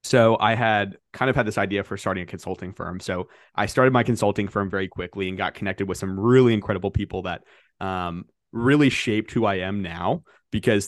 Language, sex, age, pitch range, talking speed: English, male, 20-39, 95-110 Hz, 210 wpm